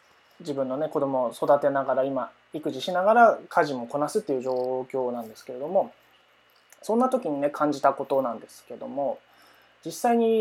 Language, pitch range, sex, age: Japanese, 130-195 Hz, male, 20-39